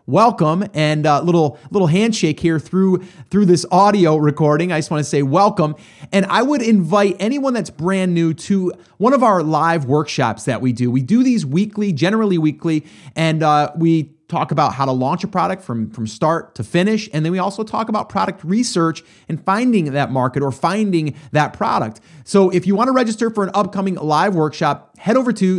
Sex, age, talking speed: male, 30-49, 200 wpm